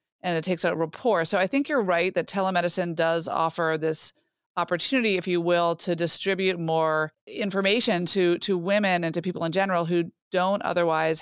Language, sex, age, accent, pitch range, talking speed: English, female, 30-49, American, 170-195 Hz, 180 wpm